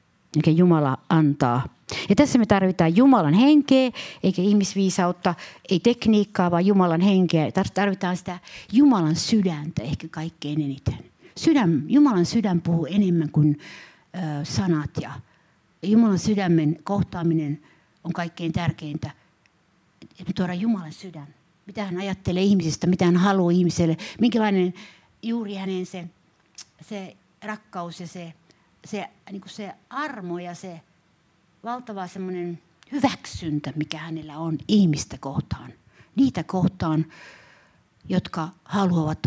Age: 60-79